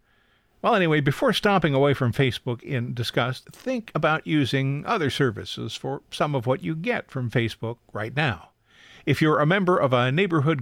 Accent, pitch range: American, 120-165 Hz